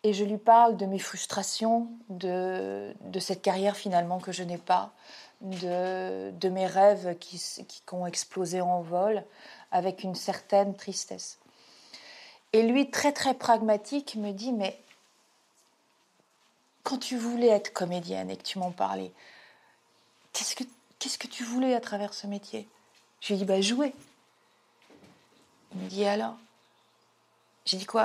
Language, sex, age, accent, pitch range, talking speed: French, female, 40-59, French, 190-235 Hz, 160 wpm